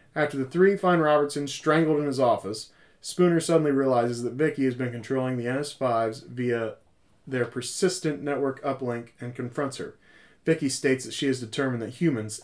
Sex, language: male, English